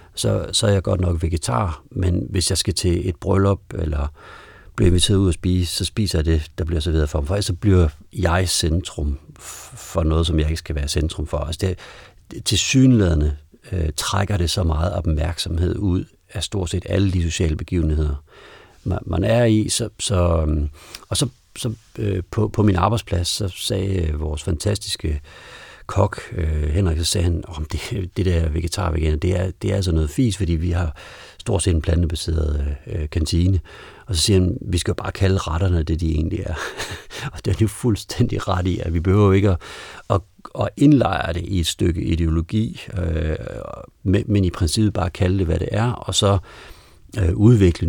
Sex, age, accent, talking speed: male, 60-79, native, 190 wpm